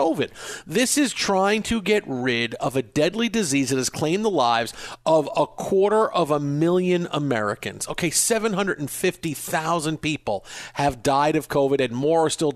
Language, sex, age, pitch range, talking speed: English, male, 40-59, 145-195 Hz, 160 wpm